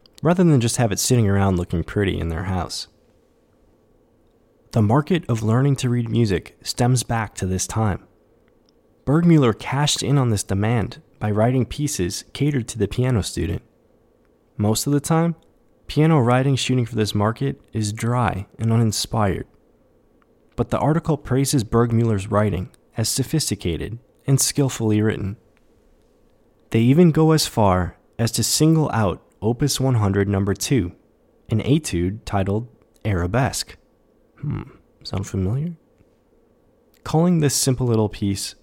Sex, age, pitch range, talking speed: male, 20-39, 100-130 Hz, 135 wpm